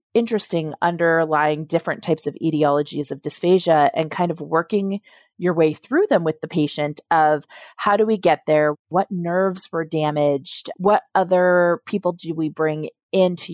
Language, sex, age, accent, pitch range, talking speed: English, female, 30-49, American, 155-185 Hz, 160 wpm